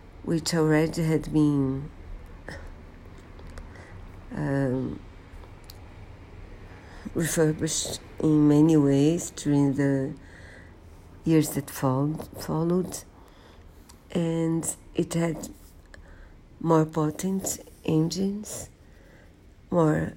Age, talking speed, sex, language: 50-69, 60 wpm, female, Portuguese